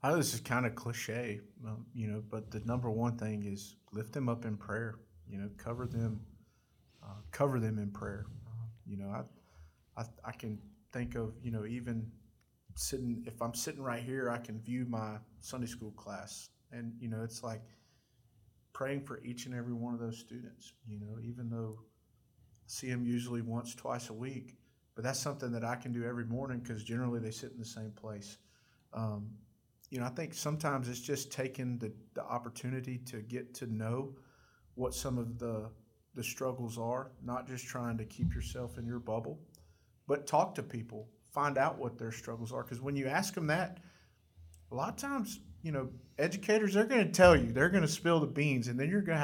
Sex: male